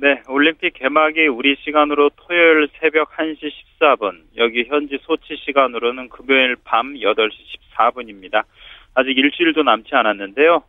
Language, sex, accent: Korean, male, native